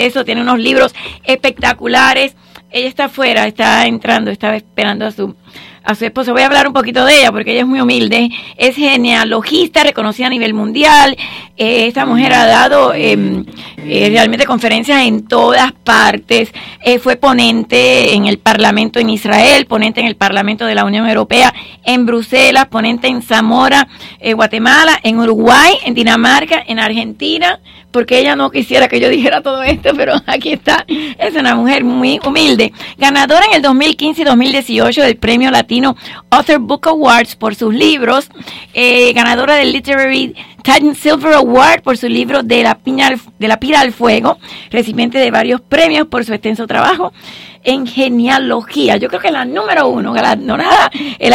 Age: 40-59